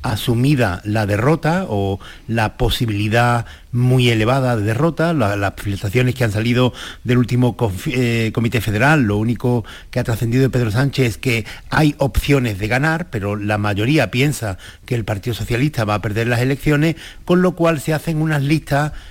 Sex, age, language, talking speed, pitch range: male, 50-69, Spanish, 175 wpm, 110-150 Hz